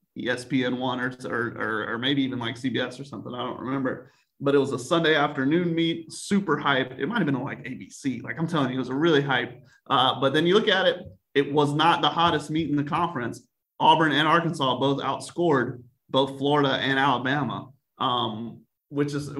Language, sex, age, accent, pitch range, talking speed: English, male, 30-49, American, 125-150 Hz, 200 wpm